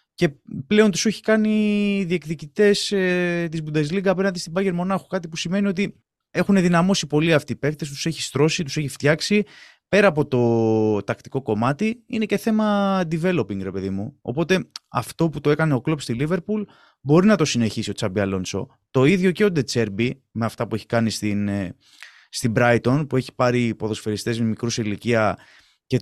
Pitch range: 115-180 Hz